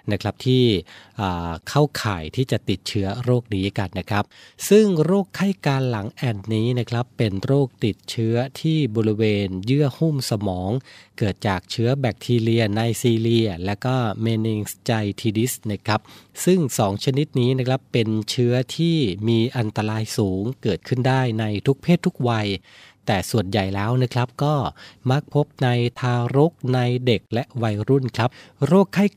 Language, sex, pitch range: Thai, male, 110-130 Hz